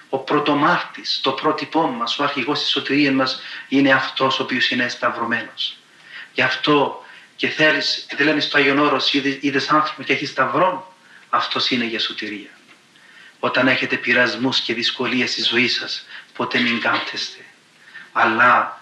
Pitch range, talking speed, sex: 120-140 Hz, 145 wpm, male